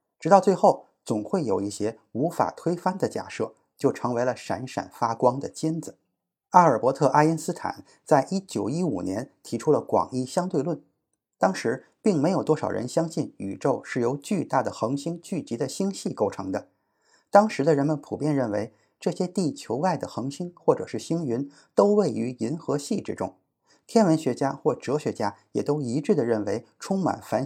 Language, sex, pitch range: Chinese, male, 130-185 Hz